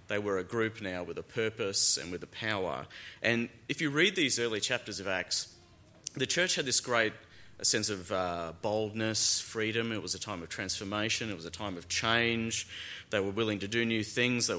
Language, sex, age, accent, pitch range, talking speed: English, male, 30-49, Australian, 95-115 Hz, 210 wpm